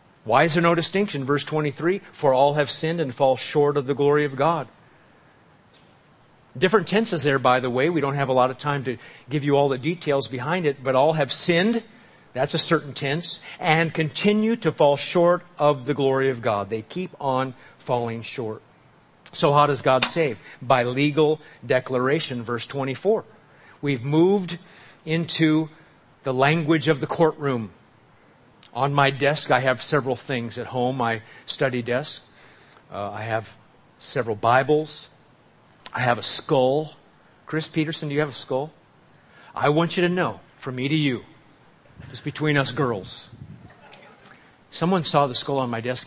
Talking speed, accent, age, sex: 170 wpm, American, 40-59, male